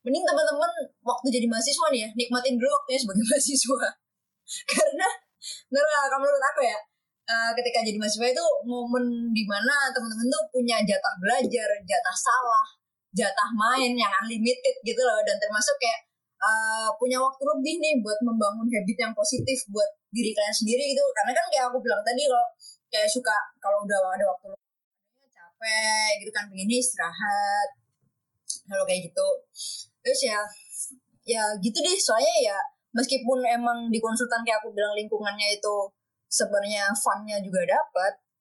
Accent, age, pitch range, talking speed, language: native, 20-39, 210-275 Hz, 150 wpm, Indonesian